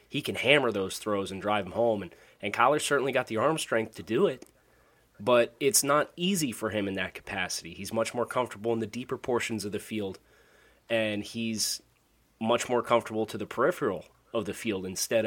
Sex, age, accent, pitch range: male, 30-49, American, 100-115 Hz